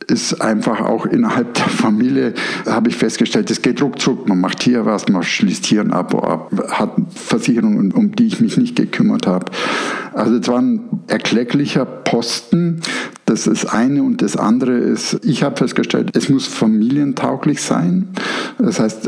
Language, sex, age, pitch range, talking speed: German, male, 60-79, 155-245 Hz, 170 wpm